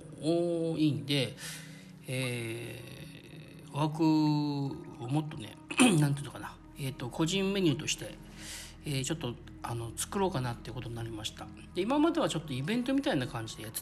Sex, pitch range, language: male, 130-165 Hz, Japanese